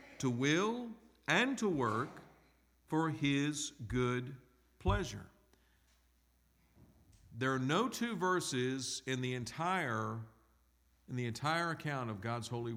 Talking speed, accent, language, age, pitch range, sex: 115 wpm, American, English, 50-69, 95-135 Hz, male